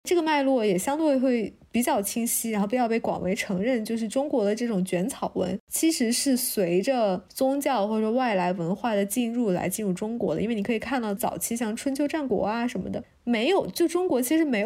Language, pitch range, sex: Chinese, 195-270 Hz, female